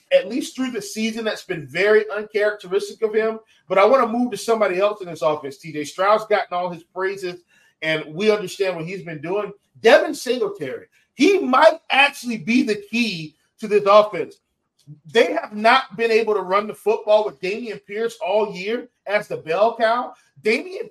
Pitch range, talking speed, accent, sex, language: 210-270 Hz, 185 wpm, American, male, English